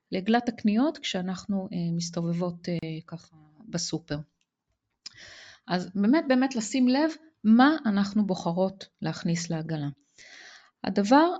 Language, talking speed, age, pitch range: Hebrew, 90 wpm, 30-49, 185-230 Hz